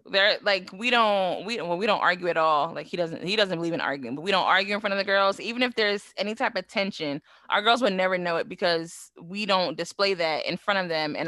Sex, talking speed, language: female, 275 wpm, English